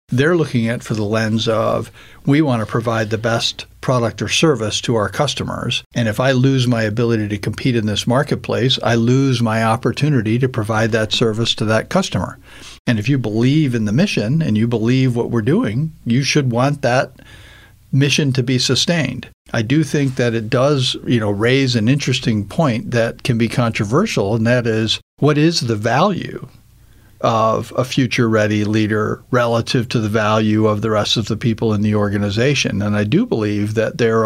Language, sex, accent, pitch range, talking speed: English, male, American, 110-130 Hz, 195 wpm